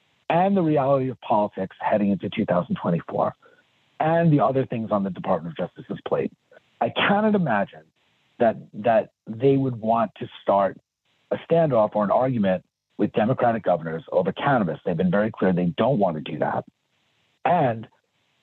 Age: 40-59